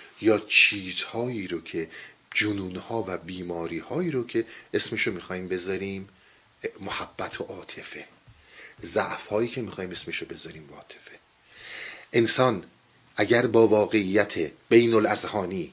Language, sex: Persian, male